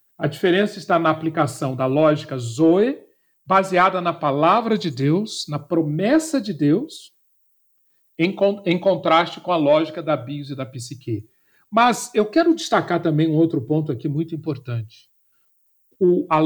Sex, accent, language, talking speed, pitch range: male, Brazilian, Portuguese, 145 wpm, 140-210 Hz